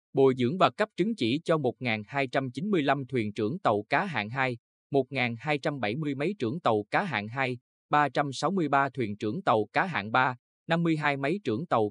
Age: 20-39